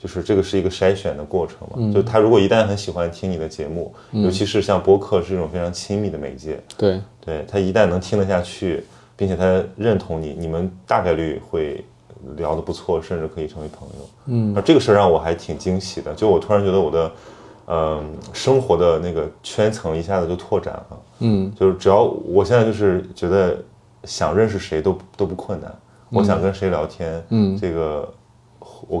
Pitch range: 85-100 Hz